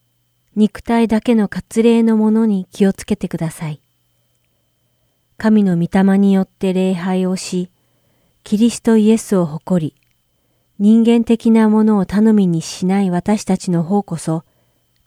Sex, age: female, 40-59